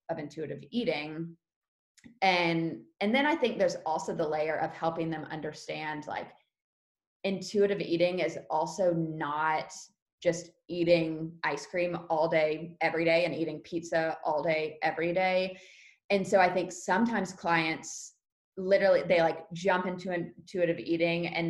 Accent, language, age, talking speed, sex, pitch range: American, English, 20-39, 140 wpm, female, 160-195 Hz